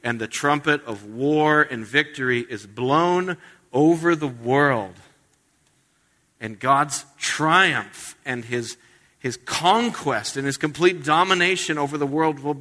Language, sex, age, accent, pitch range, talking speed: English, male, 50-69, American, 130-190 Hz, 130 wpm